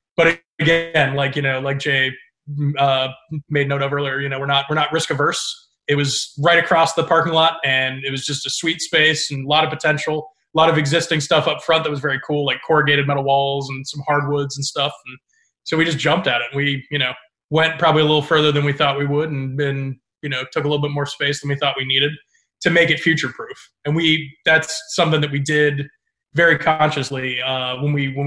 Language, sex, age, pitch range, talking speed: English, male, 20-39, 140-160 Hz, 235 wpm